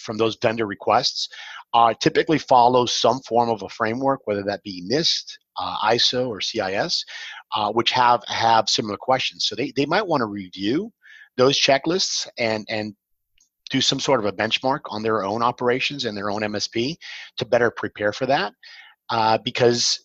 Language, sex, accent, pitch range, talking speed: English, male, American, 105-130 Hz, 175 wpm